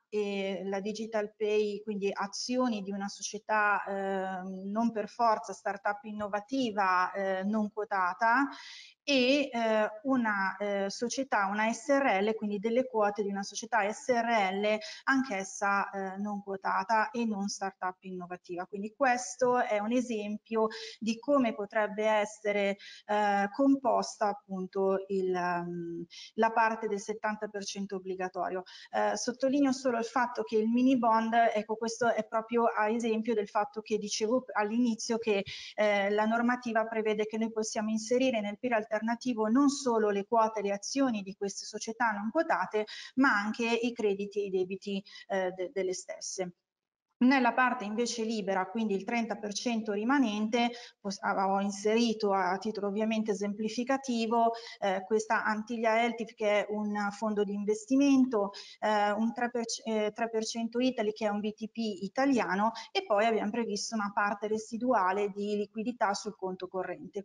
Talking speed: 140 wpm